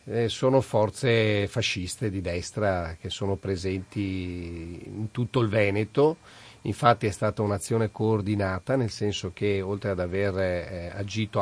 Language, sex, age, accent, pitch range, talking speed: Italian, male, 40-59, native, 95-110 Hz, 125 wpm